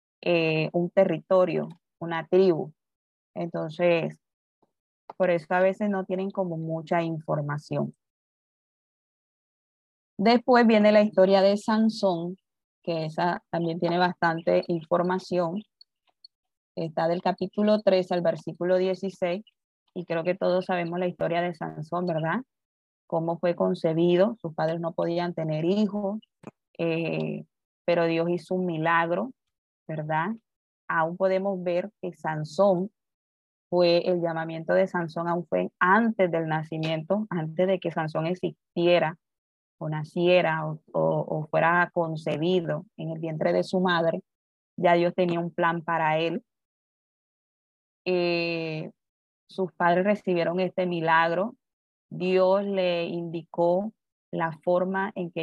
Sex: female